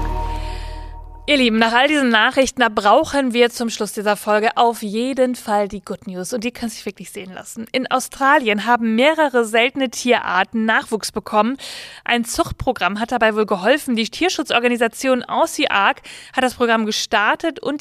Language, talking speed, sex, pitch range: German, 165 wpm, female, 210-265 Hz